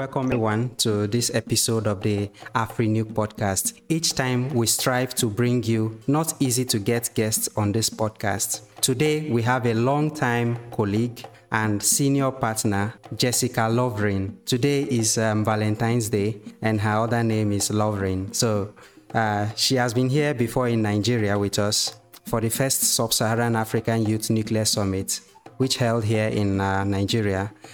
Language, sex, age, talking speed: English, male, 30-49, 155 wpm